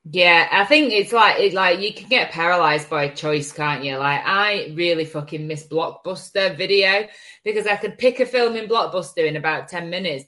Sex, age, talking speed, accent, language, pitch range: female, 20-39, 200 wpm, British, English, 160-210 Hz